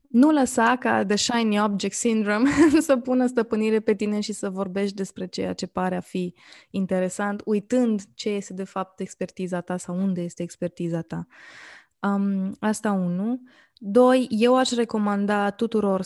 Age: 20-39